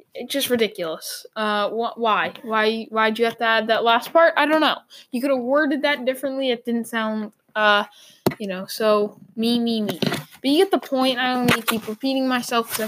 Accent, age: American, 10-29